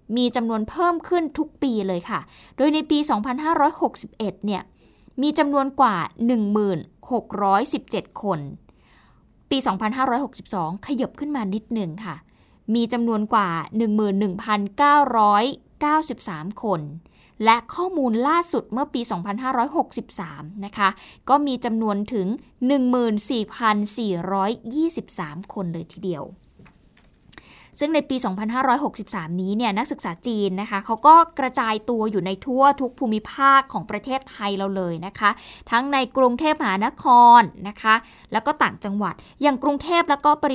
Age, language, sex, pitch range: 20-39, Thai, female, 200-270 Hz